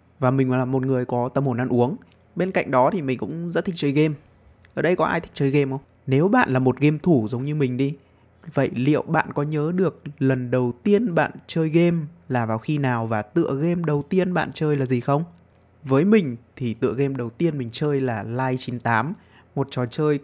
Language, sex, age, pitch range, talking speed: Vietnamese, male, 20-39, 120-150 Hz, 235 wpm